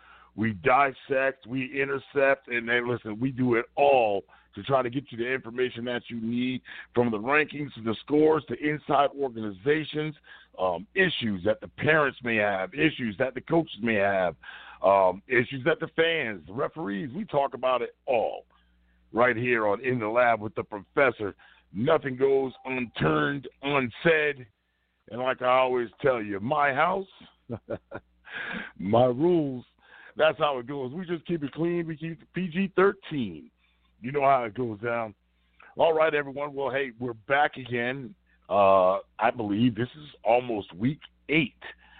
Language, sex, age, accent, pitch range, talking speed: English, male, 50-69, American, 105-140 Hz, 160 wpm